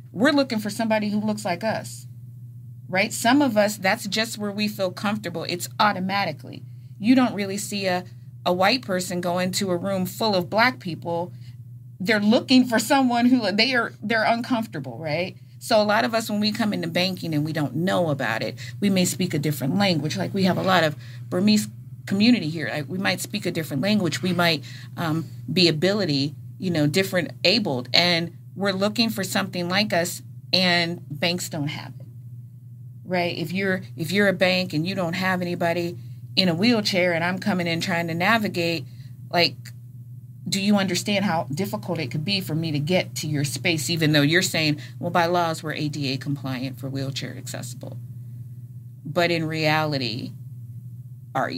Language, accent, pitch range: English, American, 130-195 Hz